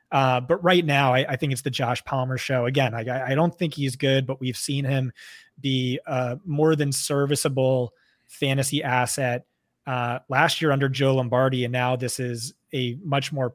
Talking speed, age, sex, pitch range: 195 wpm, 20-39, male, 125-145 Hz